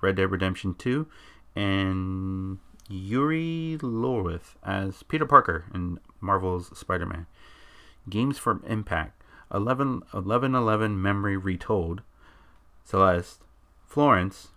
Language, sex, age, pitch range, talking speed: English, male, 30-49, 85-105 Hz, 90 wpm